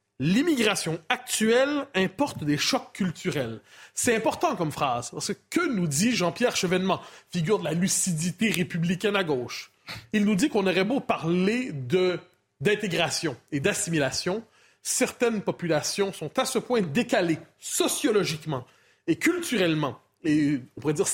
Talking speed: 135 wpm